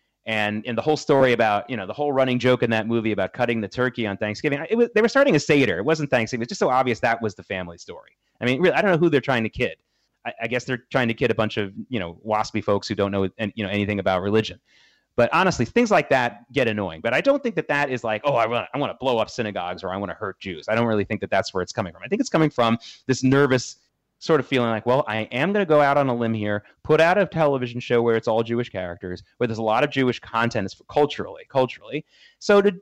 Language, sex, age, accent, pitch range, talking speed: English, male, 30-49, American, 110-160 Hz, 285 wpm